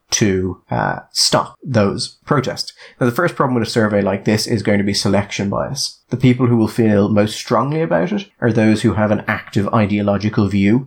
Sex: male